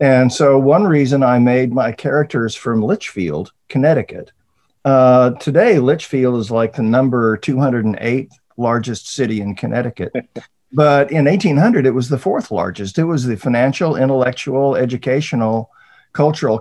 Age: 50-69